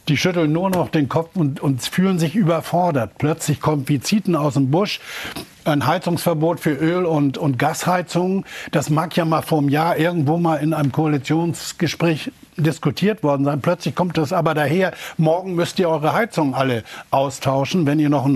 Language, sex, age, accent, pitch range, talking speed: German, male, 60-79, German, 145-170 Hz, 175 wpm